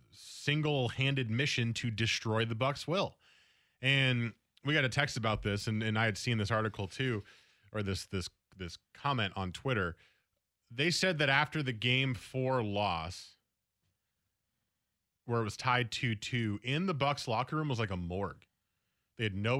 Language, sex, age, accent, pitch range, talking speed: English, male, 20-39, American, 110-150 Hz, 170 wpm